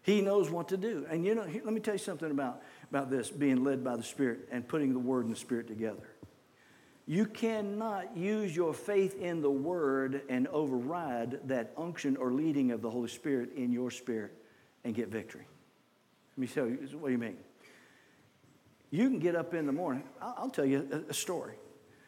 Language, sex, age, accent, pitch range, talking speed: English, male, 50-69, American, 135-195 Hz, 200 wpm